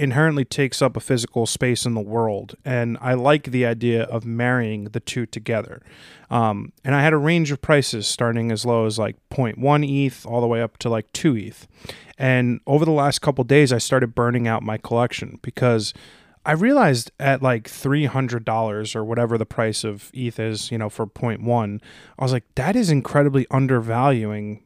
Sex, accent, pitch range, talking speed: male, American, 115-130 Hz, 190 wpm